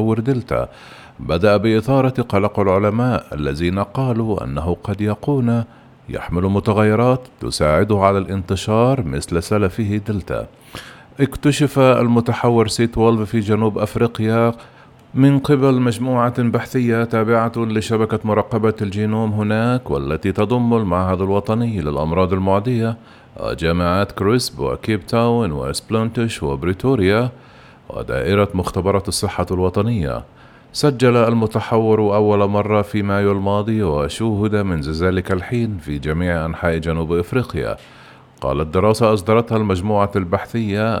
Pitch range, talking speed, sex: 95-115 Hz, 100 wpm, male